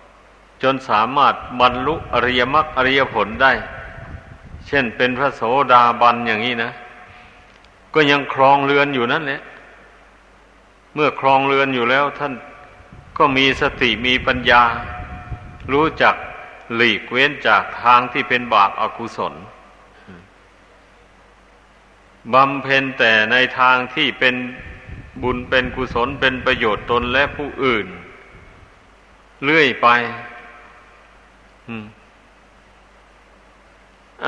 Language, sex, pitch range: Thai, male, 120-135 Hz